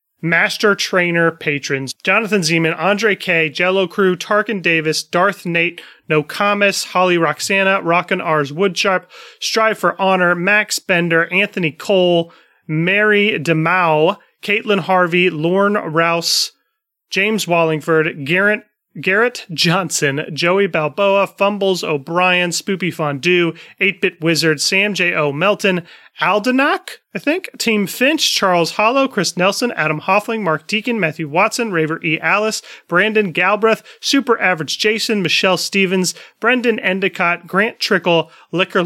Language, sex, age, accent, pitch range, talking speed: English, male, 30-49, American, 165-205 Hz, 120 wpm